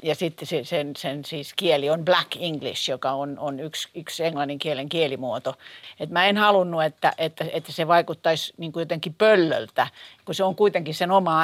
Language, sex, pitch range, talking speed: Finnish, female, 155-195 Hz, 185 wpm